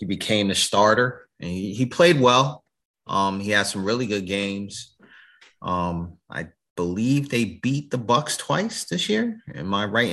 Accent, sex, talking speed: American, male, 170 wpm